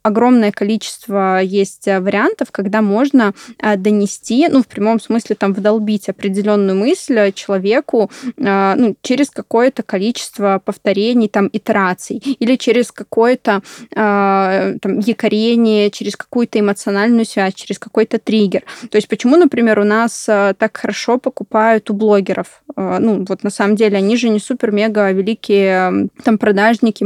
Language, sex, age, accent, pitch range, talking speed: Russian, female, 20-39, native, 205-245 Hz, 125 wpm